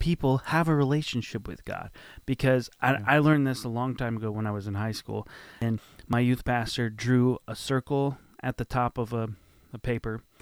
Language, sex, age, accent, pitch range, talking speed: English, male, 30-49, American, 110-130 Hz, 200 wpm